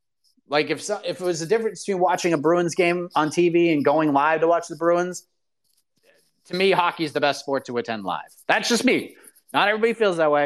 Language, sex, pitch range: English, male, 155-215 Hz